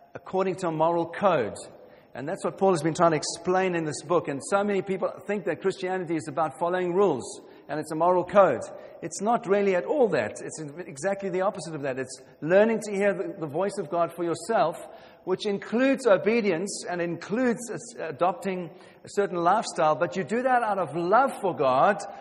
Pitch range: 155-195 Hz